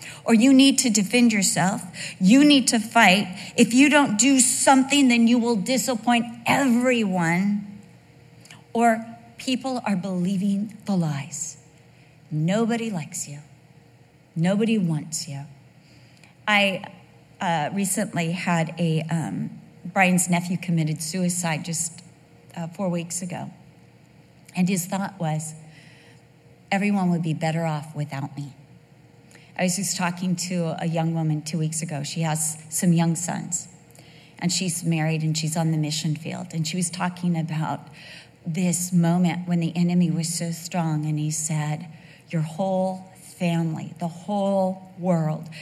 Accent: American